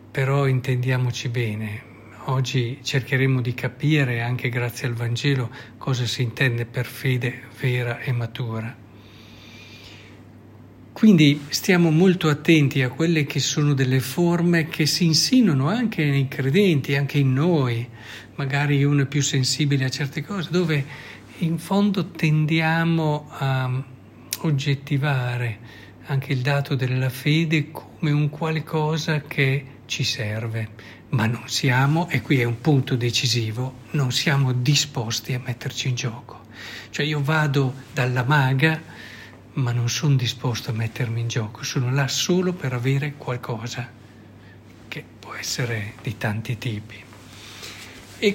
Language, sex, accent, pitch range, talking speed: Italian, male, native, 120-150 Hz, 130 wpm